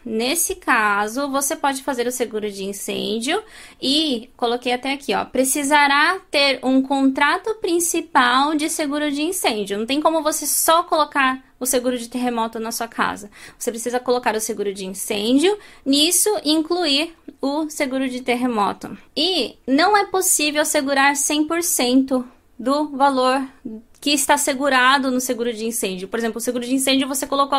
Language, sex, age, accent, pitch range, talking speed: Portuguese, female, 20-39, Brazilian, 240-290 Hz, 155 wpm